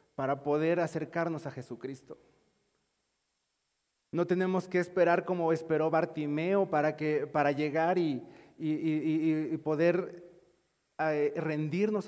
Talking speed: 105 wpm